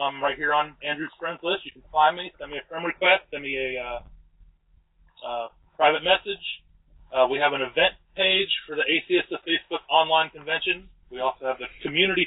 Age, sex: 30-49, male